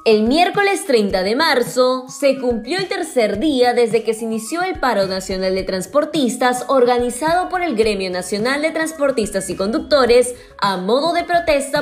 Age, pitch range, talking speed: 10-29, 210-290 Hz, 160 wpm